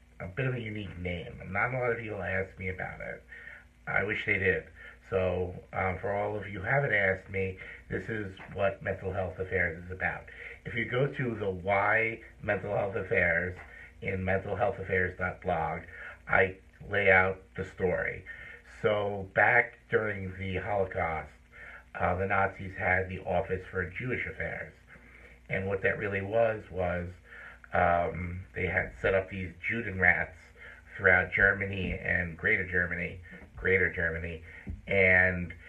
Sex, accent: male, American